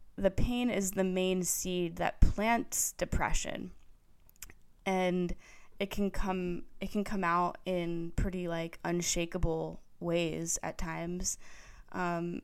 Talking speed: 120 wpm